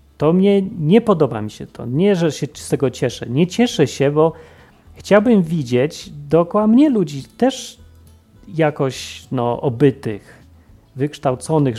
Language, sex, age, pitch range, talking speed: Polish, male, 30-49, 125-175 Hz, 135 wpm